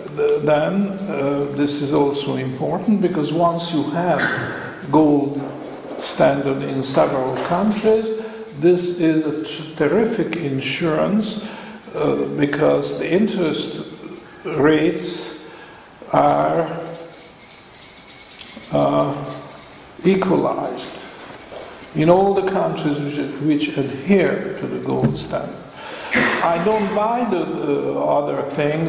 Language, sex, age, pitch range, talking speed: English, male, 50-69, 140-180 Hz, 95 wpm